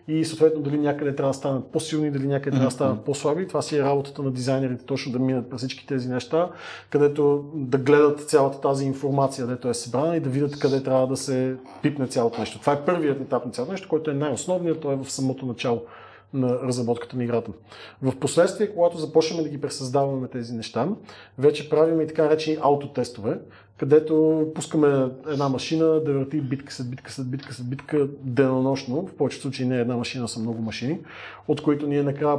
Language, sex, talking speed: Bulgarian, male, 200 wpm